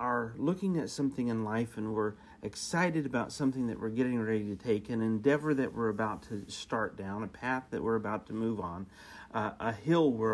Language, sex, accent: English, male, American